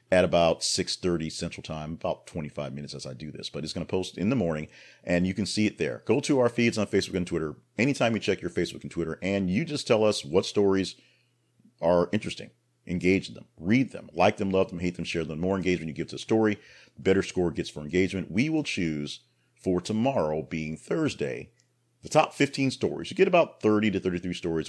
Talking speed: 225 wpm